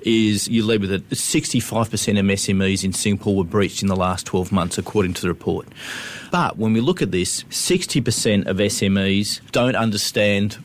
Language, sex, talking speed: English, male, 185 wpm